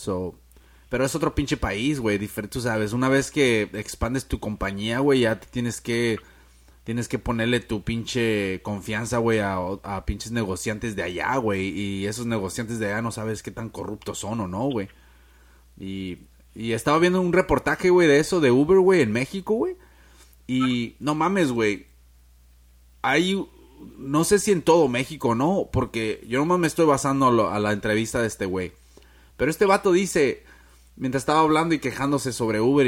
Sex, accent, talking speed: male, Mexican, 185 wpm